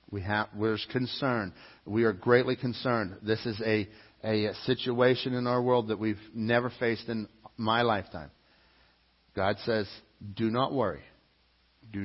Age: 50-69